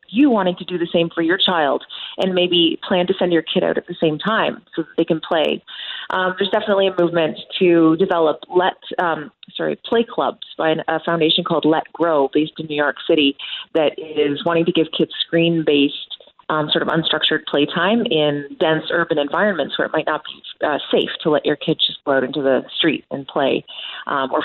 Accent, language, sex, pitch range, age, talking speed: American, English, female, 155-195 Hz, 30-49, 215 wpm